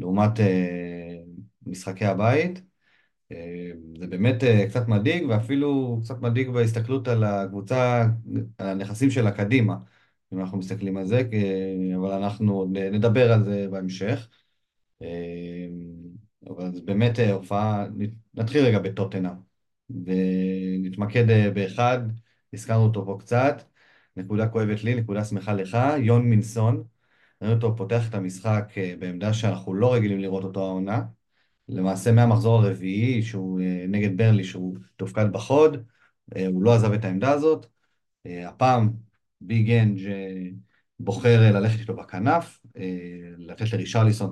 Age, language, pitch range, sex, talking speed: 30-49, Hebrew, 95-115 Hz, male, 115 wpm